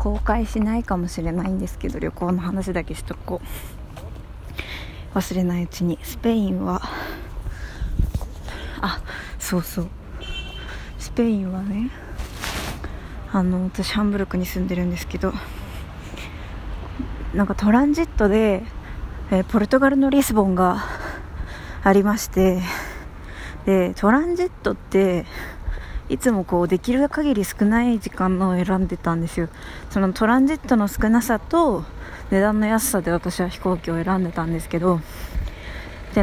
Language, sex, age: Japanese, female, 20-39